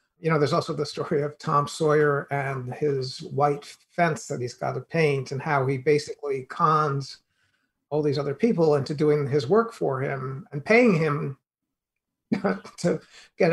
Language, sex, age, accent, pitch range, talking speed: English, male, 50-69, American, 145-175 Hz, 170 wpm